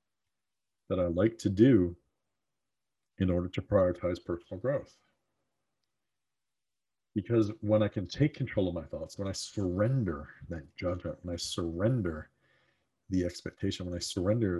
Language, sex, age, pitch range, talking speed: English, male, 50-69, 90-115 Hz, 135 wpm